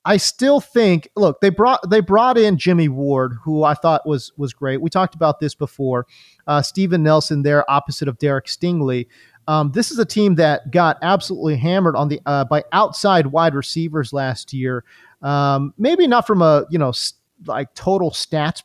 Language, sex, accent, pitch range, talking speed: English, male, American, 145-185 Hz, 185 wpm